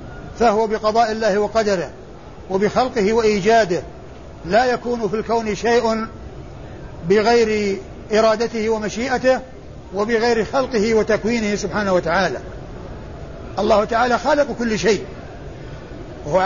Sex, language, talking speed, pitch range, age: male, Arabic, 90 wpm, 210-240 Hz, 60-79